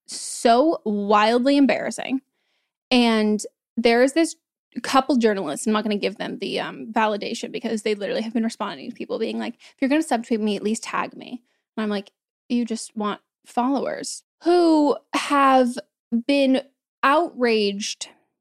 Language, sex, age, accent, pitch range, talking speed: English, female, 10-29, American, 220-270 Hz, 155 wpm